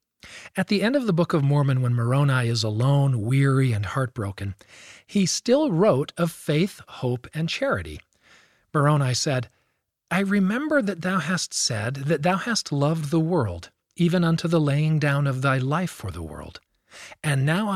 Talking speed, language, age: 170 wpm, English, 40-59